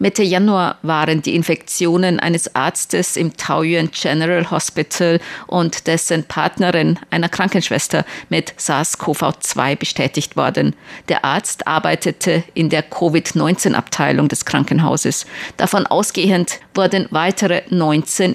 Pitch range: 155-185 Hz